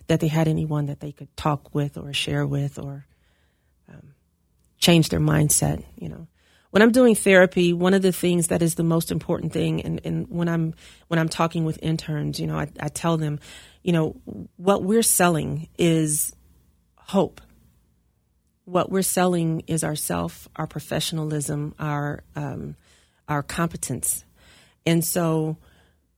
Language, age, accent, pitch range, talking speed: English, 40-59, American, 145-170 Hz, 160 wpm